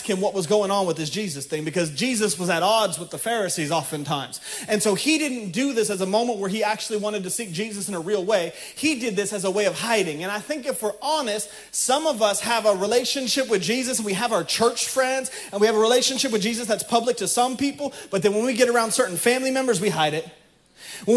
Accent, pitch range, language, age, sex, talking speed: American, 195-250 Hz, English, 30-49, male, 260 wpm